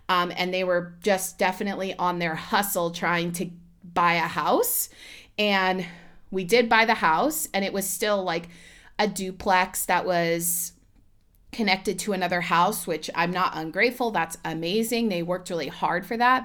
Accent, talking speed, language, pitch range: American, 165 wpm, English, 175-235 Hz